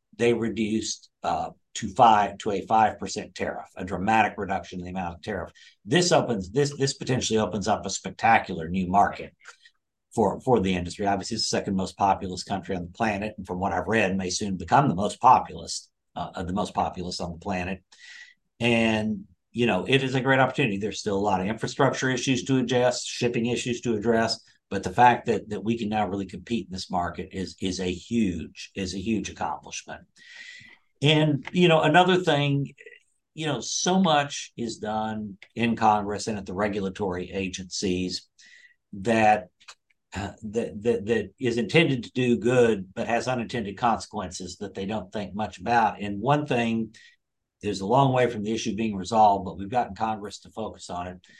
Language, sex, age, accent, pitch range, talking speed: English, male, 60-79, American, 95-125 Hz, 190 wpm